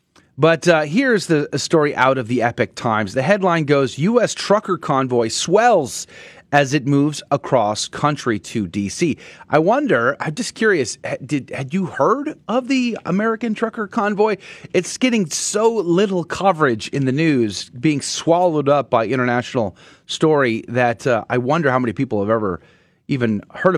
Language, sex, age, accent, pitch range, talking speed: English, male, 30-49, American, 120-175 Hz, 160 wpm